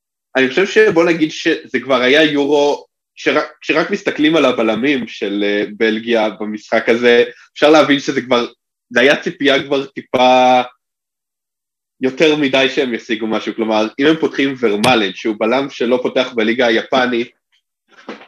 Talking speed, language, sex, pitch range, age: 135 wpm, Hebrew, male, 120-145 Hz, 20-39